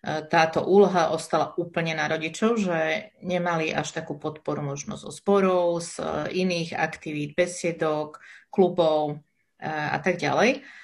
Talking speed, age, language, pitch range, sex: 115 wpm, 30-49, Slovak, 155-195 Hz, female